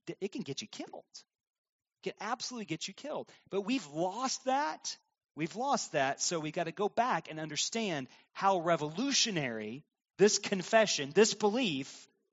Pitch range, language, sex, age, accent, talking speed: 170-225 Hz, English, male, 30-49, American, 155 wpm